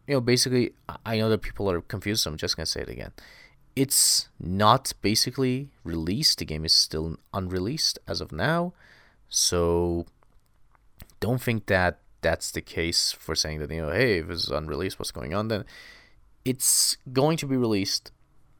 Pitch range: 90-135 Hz